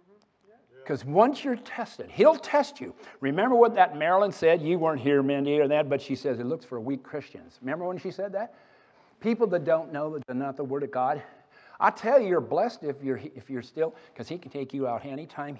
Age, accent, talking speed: 50-69, American, 225 wpm